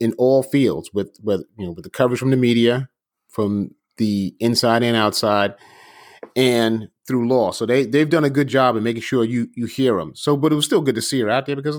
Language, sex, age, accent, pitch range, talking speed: English, male, 30-49, American, 115-145 Hz, 240 wpm